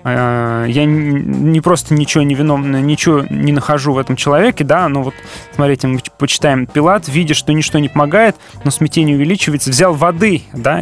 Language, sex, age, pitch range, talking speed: Russian, male, 20-39, 130-175 Hz, 160 wpm